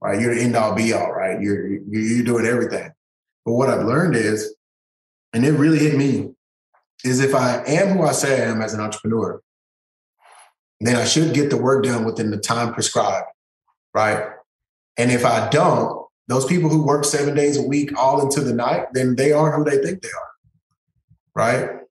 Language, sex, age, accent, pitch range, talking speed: English, male, 20-39, American, 115-145 Hz, 195 wpm